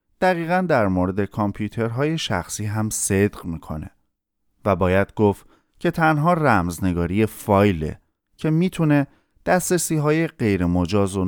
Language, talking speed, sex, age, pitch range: Persian, 105 wpm, male, 30-49, 95-140 Hz